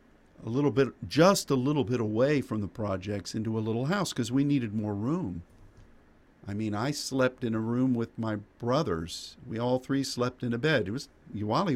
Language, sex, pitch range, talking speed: English, male, 95-130 Hz, 205 wpm